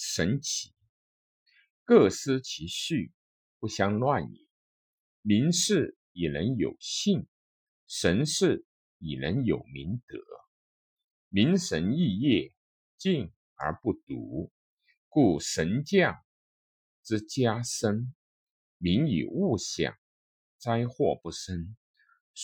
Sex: male